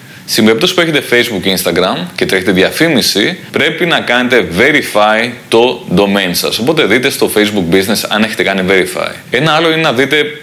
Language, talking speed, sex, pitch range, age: Greek, 175 wpm, male, 105-140 Hz, 30-49